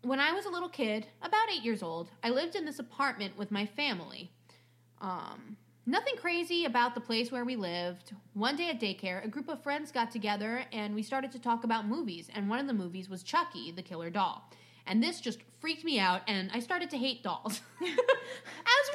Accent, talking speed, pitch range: American, 210 wpm, 200-310 Hz